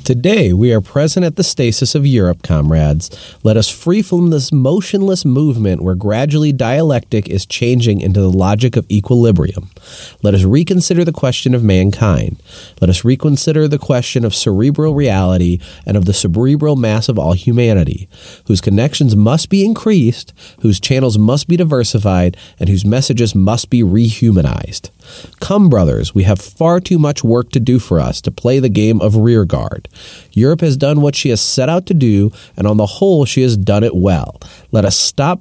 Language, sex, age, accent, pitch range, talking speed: English, male, 30-49, American, 95-140 Hz, 180 wpm